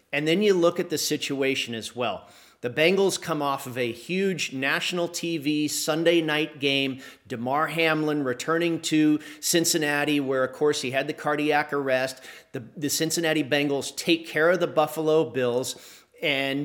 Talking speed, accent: 160 wpm, American